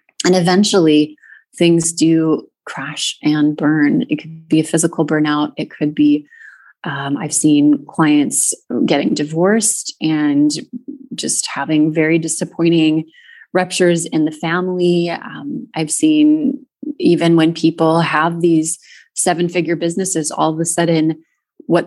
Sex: female